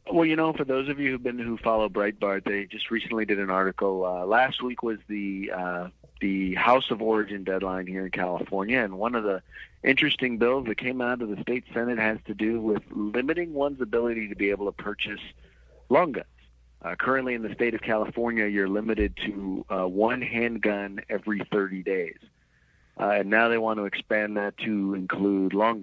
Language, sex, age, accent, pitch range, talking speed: English, male, 40-59, American, 100-120 Hz, 200 wpm